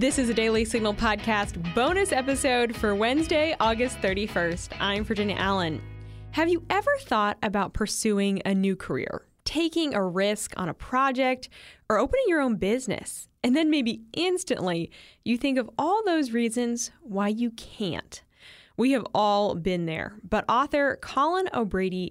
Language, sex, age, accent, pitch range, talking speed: English, female, 10-29, American, 200-280 Hz, 155 wpm